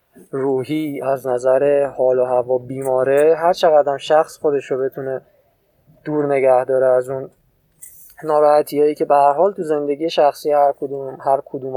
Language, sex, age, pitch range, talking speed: Persian, male, 20-39, 130-175 Hz, 140 wpm